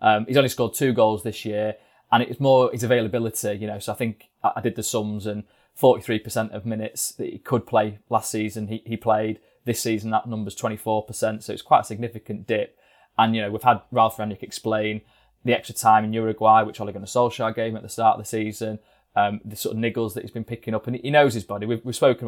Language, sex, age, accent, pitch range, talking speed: English, male, 20-39, British, 105-120 Hz, 240 wpm